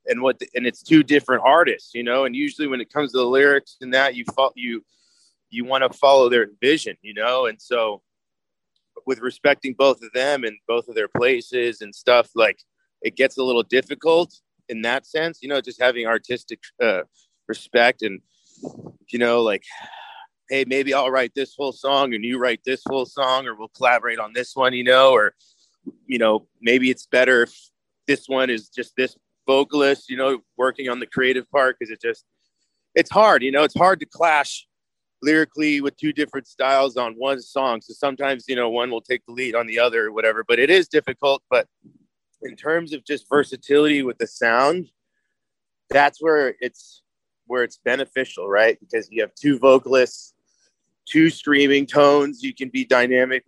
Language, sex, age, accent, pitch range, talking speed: English, male, 30-49, American, 125-145 Hz, 195 wpm